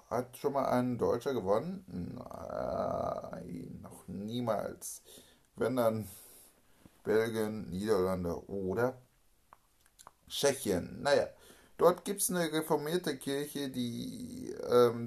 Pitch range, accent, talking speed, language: 110-150 Hz, German, 95 wpm, German